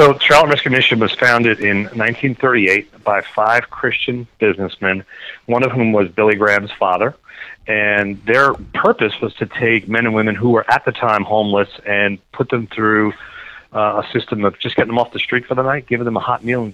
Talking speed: 205 wpm